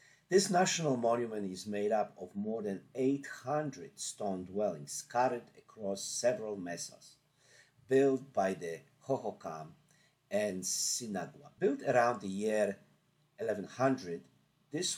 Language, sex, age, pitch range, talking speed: English, male, 50-69, 95-140 Hz, 110 wpm